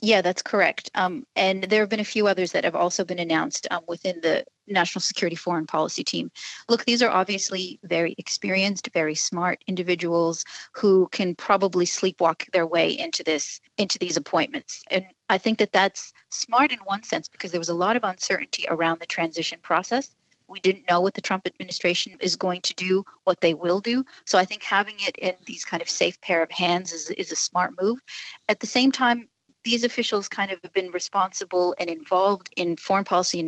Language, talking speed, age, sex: English, 205 wpm, 40-59, female